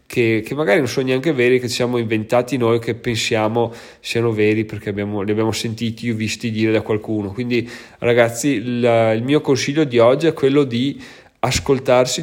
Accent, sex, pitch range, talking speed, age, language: native, male, 110-130 Hz, 175 wpm, 20-39, Italian